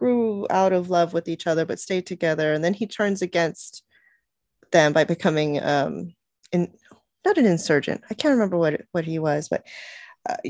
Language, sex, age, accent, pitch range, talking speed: English, female, 30-49, American, 175-230 Hz, 185 wpm